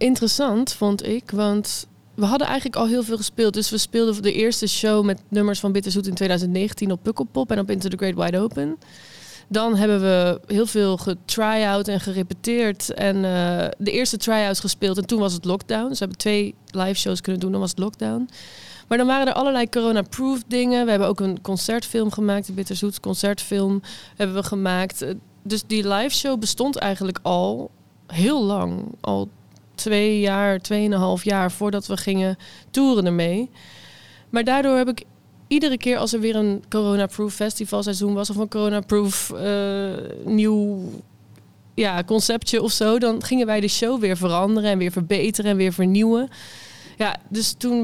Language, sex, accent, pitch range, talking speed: Dutch, female, Dutch, 195-225 Hz, 175 wpm